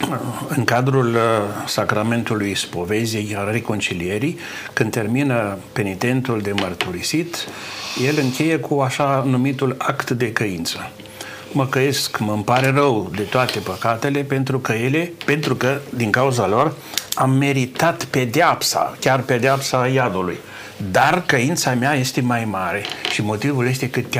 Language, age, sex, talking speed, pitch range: Romanian, 60-79, male, 130 wpm, 105-135 Hz